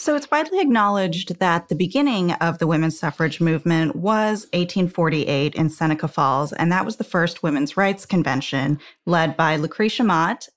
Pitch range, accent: 155-190 Hz, American